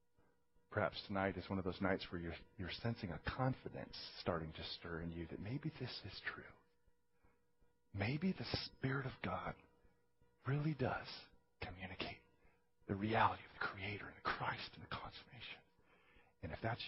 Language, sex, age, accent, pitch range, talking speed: English, male, 40-59, American, 85-120 Hz, 155 wpm